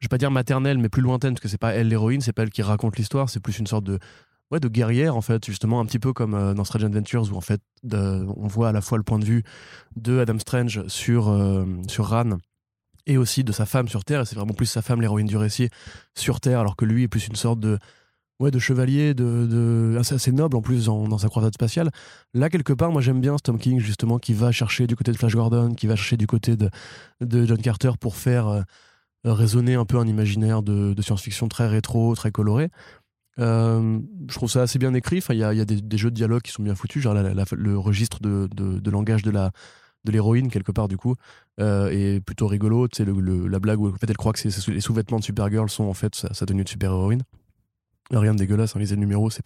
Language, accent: French, French